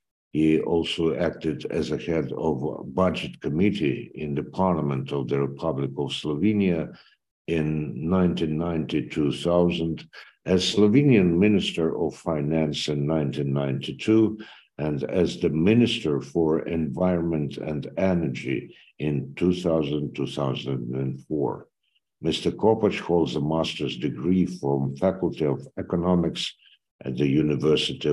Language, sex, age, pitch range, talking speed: Ukrainian, male, 60-79, 75-95 Hz, 105 wpm